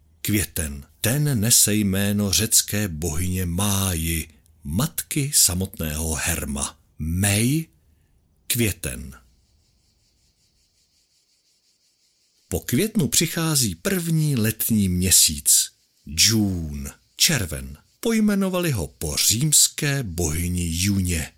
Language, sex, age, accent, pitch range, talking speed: Czech, male, 60-79, native, 80-125 Hz, 75 wpm